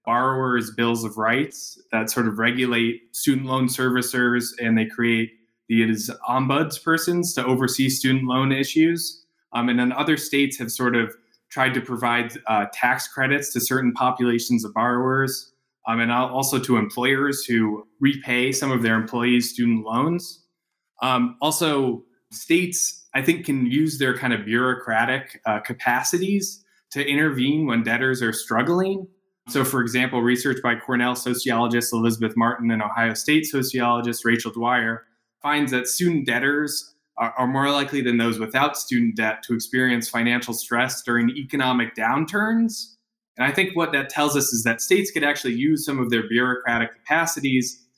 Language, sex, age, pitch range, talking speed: English, male, 20-39, 115-140 Hz, 160 wpm